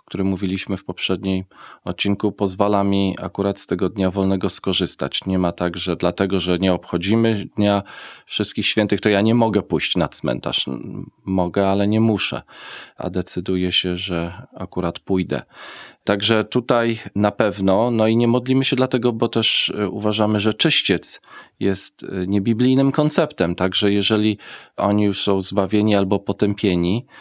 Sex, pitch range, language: male, 95-110 Hz, Polish